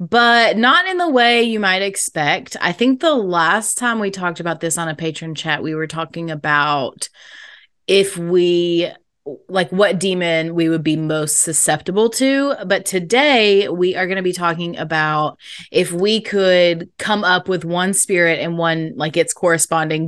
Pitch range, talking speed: 165-220 Hz, 175 wpm